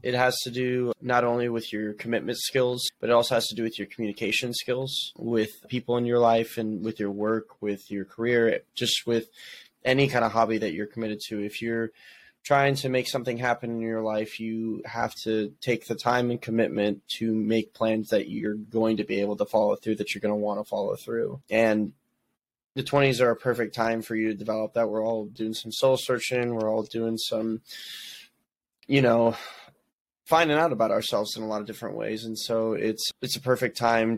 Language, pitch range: English, 110-120 Hz